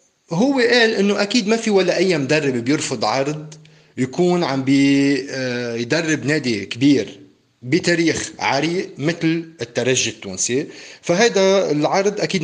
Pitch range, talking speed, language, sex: 130-185 Hz, 115 wpm, Arabic, male